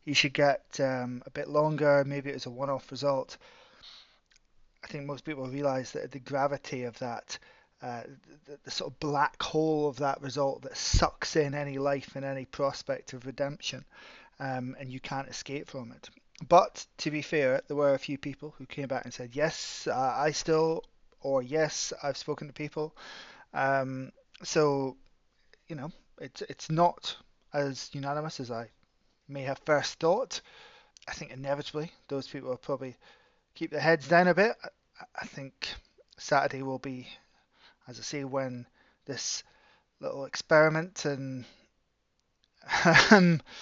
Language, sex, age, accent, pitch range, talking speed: English, male, 20-39, British, 135-155 Hz, 160 wpm